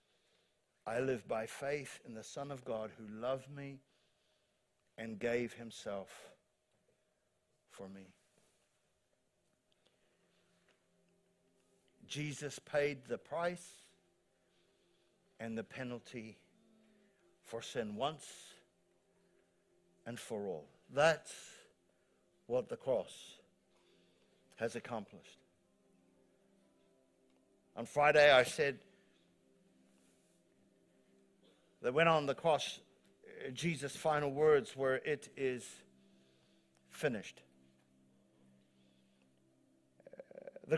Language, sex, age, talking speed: English, male, 60-79, 80 wpm